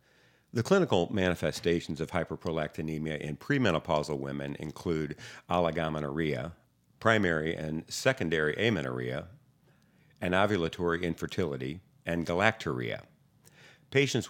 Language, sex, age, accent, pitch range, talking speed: English, male, 50-69, American, 80-105 Hz, 80 wpm